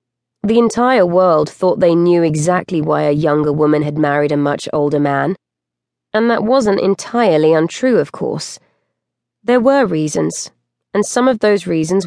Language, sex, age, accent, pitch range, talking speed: English, female, 20-39, British, 155-205 Hz, 160 wpm